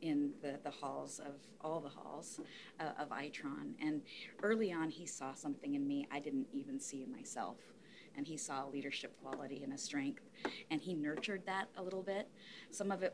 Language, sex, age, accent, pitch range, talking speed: English, female, 30-49, American, 150-245 Hz, 195 wpm